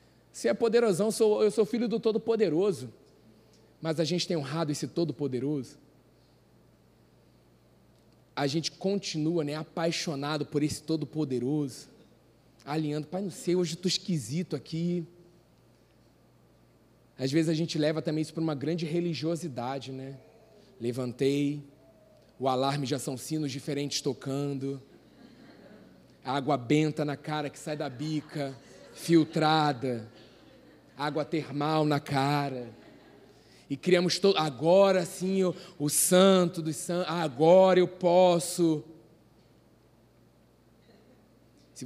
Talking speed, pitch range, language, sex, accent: 115 wpm, 135-165 Hz, Portuguese, male, Brazilian